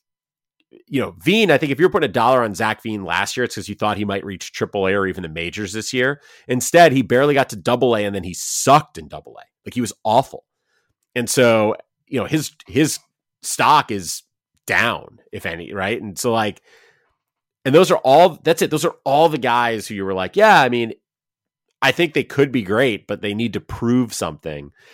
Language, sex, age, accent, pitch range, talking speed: English, male, 30-49, American, 105-140 Hz, 225 wpm